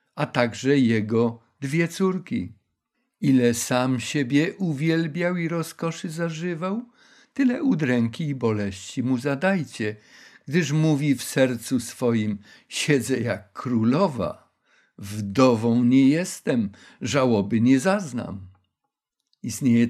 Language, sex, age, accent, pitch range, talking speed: Polish, male, 50-69, native, 120-165 Hz, 100 wpm